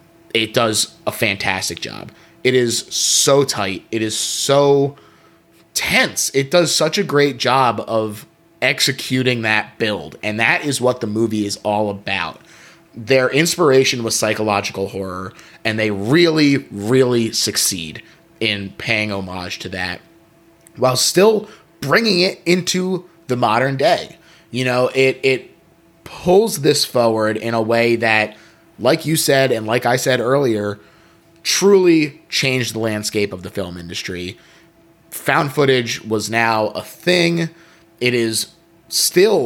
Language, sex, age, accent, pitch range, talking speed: English, male, 20-39, American, 110-155 Hz, 140 wpm